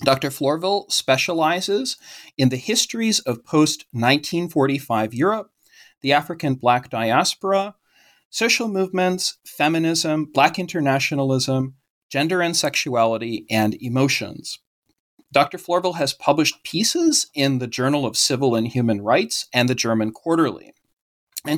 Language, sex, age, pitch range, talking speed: English, male, 40-59, 125-175 Hz, 115 wpm